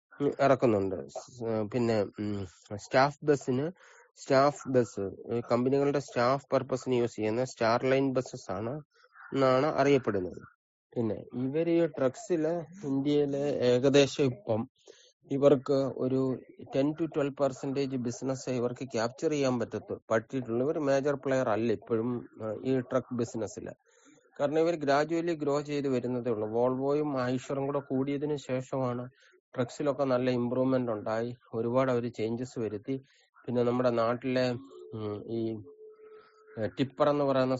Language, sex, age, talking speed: English, male, 30-49, 85 wpm